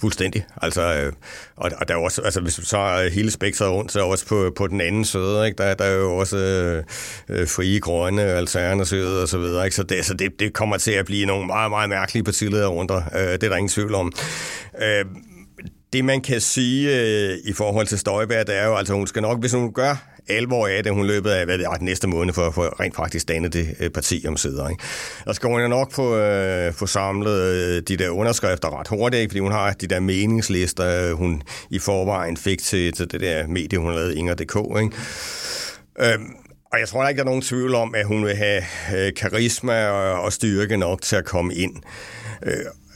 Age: 60-79